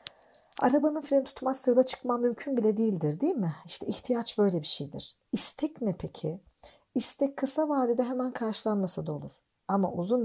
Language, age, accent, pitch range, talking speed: Turkish, 50-69, native, 180-235 Hz, 150 wpm